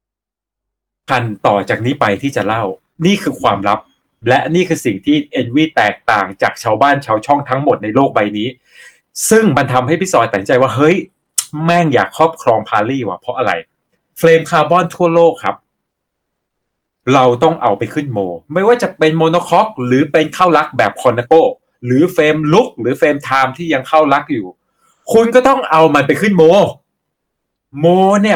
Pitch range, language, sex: 130-175 Hz, Thai, male